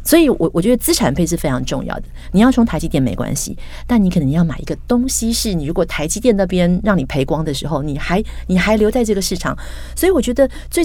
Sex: female